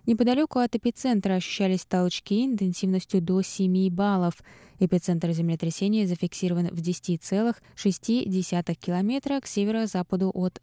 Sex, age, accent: female, 20-39, native